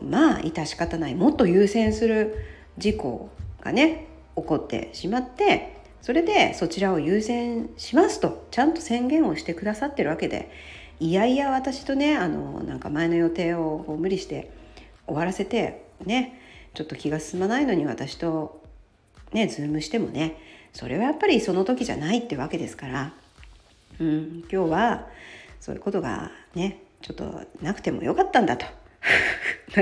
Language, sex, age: Japanese, female, 50-69